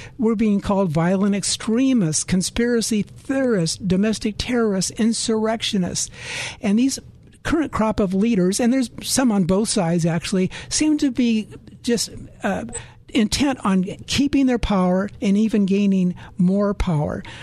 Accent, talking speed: American, 130 wpm